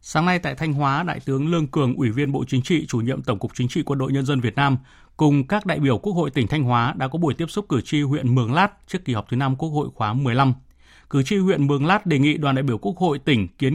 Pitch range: 125-160 Hz